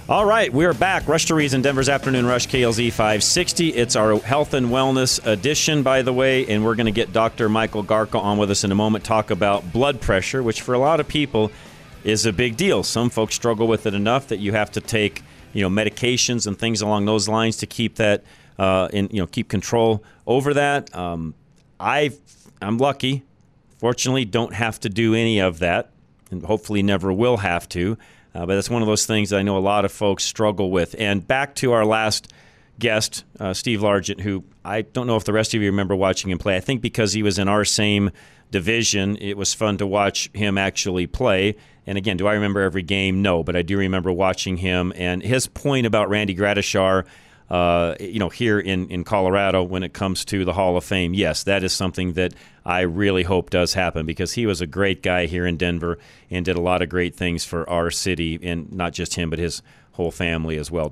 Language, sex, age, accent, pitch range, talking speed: English, male, 40-59, American, 95-115 Hz, 220 wpm